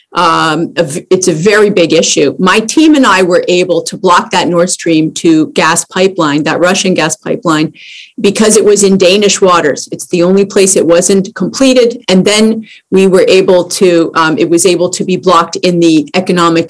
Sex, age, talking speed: female, 40-59, 190 wpm